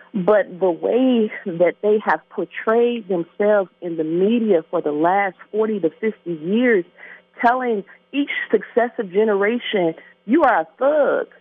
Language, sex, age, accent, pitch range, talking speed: English, female, 40-59, American, 205-270 Hz, 135 wpm